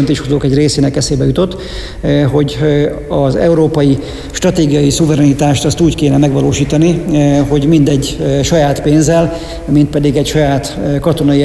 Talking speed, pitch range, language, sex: 120 wpm, 135-150 Hz, Hungarian, male